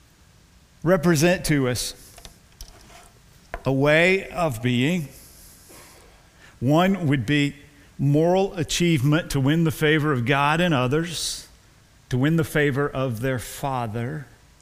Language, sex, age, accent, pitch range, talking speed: English, male, 50-69, American, 125-185 Hz, 110 wpm